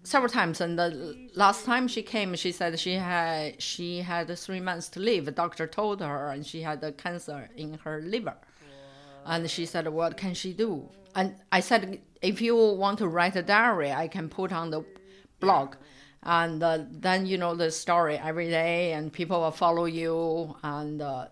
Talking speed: 190 wpm